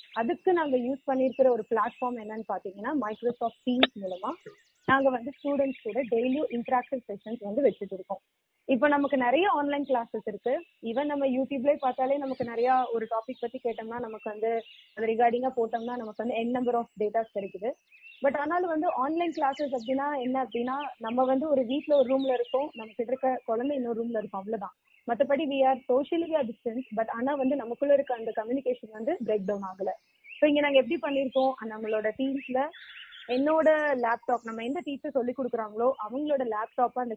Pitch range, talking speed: 225-275 Hz, 155 wpm